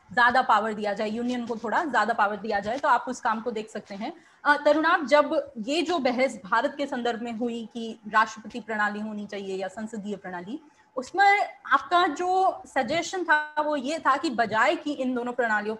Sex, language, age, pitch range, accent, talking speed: female, Hindi, 30-49, 230-290 Hz, native, 195 wpm